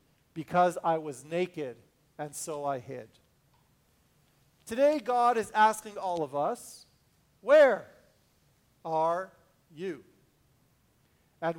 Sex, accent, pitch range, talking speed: male, American, 155-210 Hz, 100 wpm